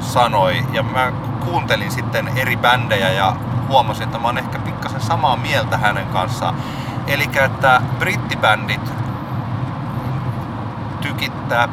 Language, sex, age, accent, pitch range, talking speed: Finnish, male, 30-49, native, 115-130 Hz, 115 wpm